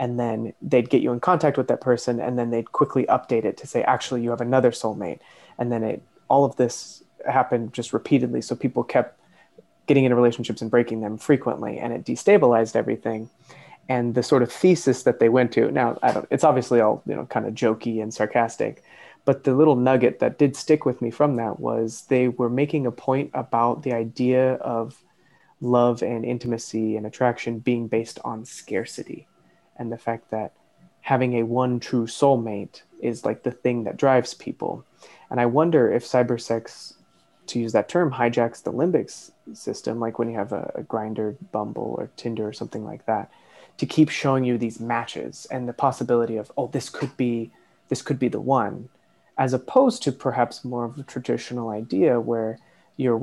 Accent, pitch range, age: American, 115-130 Hz, 20-39